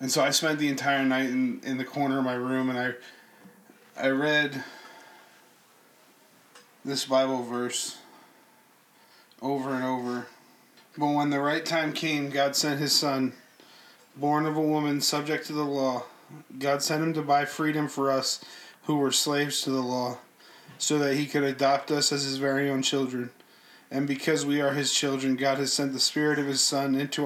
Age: 20-39